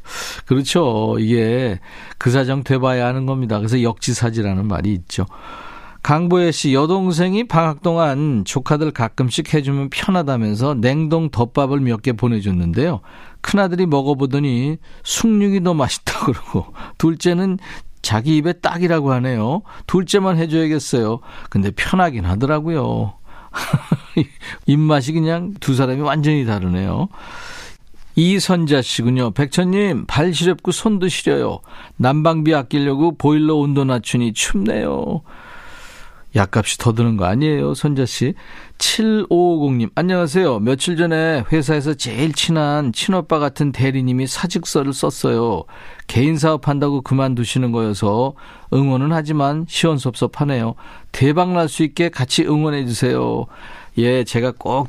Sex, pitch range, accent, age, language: male, 120-165 Hz, native, 50-69, Korean